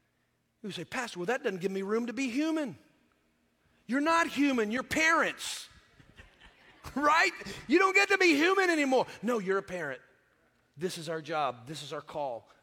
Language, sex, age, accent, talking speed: English, male, 40-59, American, 175 wpm